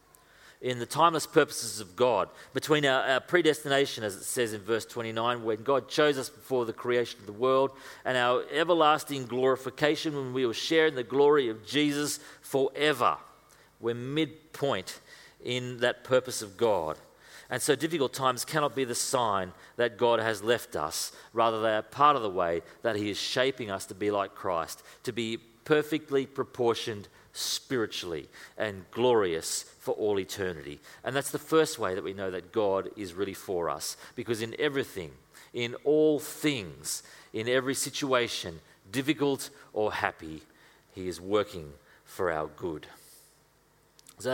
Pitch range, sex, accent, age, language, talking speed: 115-145 Hz, male, Australian, 40-59, English, 160 wpm